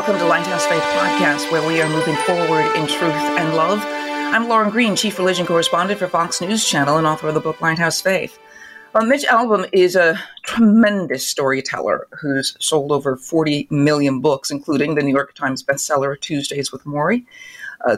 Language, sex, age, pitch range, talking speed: English, female, 40-59, 145-210 Hz, 180 wpm